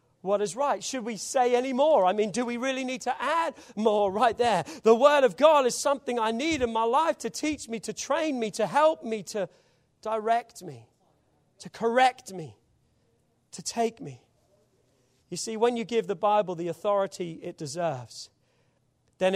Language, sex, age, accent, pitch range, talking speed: English, male, 40-59, British, 170-240 Hz, 185 wpm